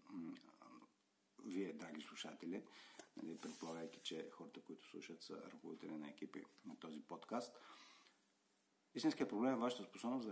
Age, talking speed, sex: 50-69, 120 wpm, male